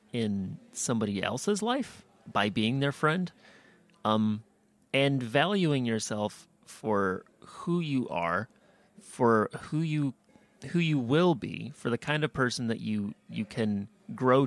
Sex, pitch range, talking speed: male, 105-155 Hz, 135 wpm